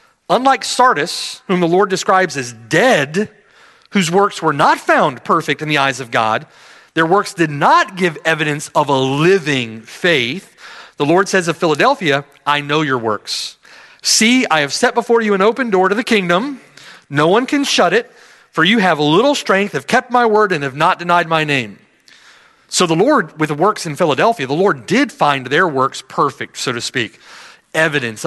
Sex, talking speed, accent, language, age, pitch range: male, 190 wpm, American, English, 40-59, 140-205 Hz